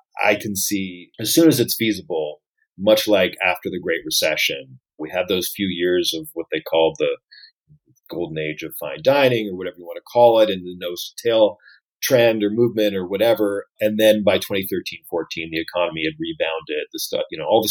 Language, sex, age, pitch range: English, male, 40-59, 95-130 Hz